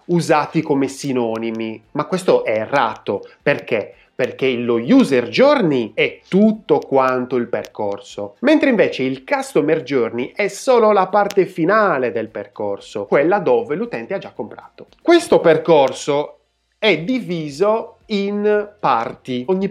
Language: Italian